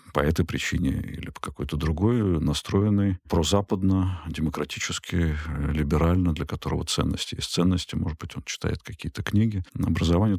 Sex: male